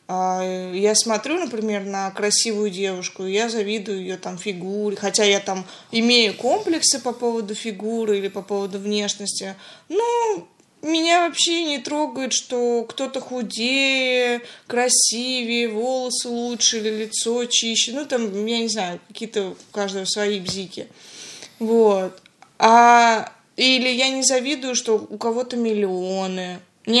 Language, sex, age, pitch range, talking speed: Russian, female, 20-39, 190-240 Hz, 125 wpm